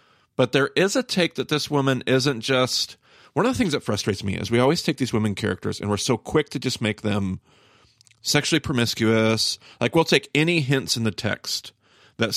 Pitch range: 110-145 Hz